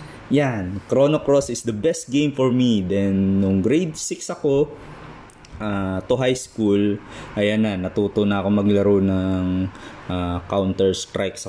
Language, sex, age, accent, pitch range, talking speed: Filipino, male, 20-39, native, 95-110 Hz, 150 wpm